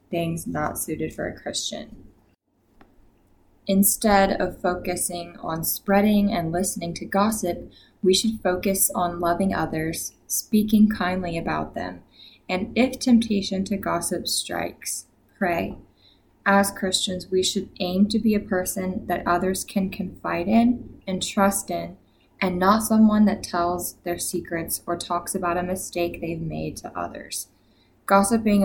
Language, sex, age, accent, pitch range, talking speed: English, female, 20-39, American, 165-195 Hz, 140 wpm